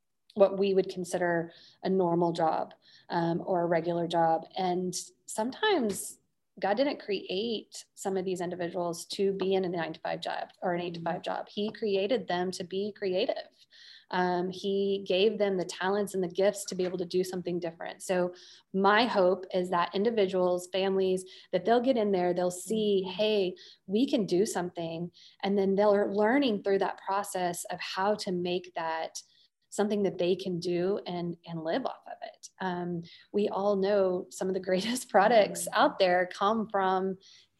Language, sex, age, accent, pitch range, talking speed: English, female, 20-39, American, 180-200 Hz, 180 wpm